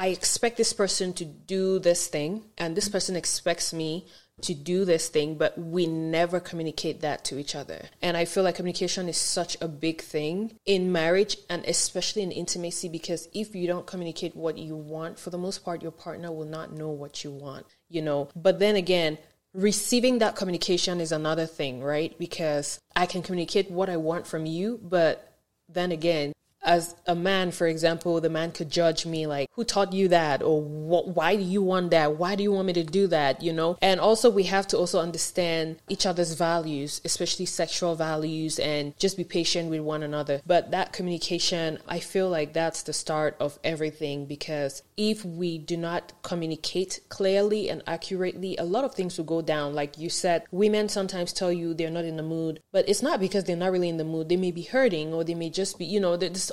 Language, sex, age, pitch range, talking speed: English, female, 20-39, 160-190 Hz, 210 wpm